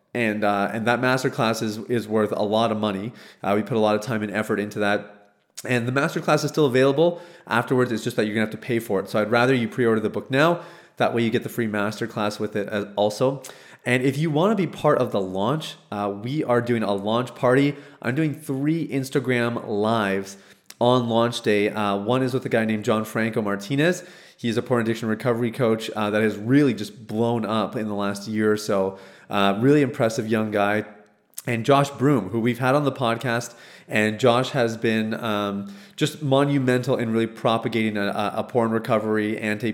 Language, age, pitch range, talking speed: English, 30-49, 105-125 Hz, 215 wpm